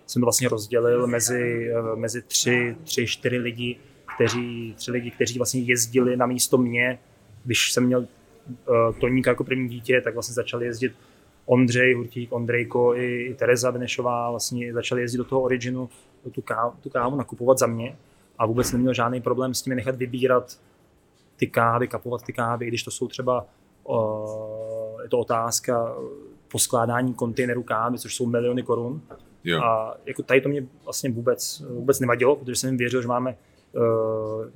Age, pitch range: 20-39, 115-130 Hz